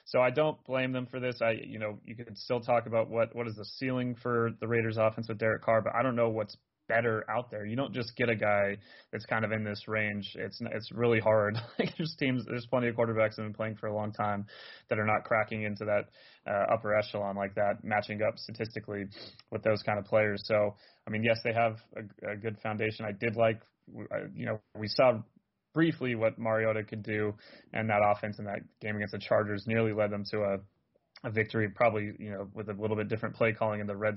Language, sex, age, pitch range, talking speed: English, male, 30-49, 105-115 Hz, 235 wpm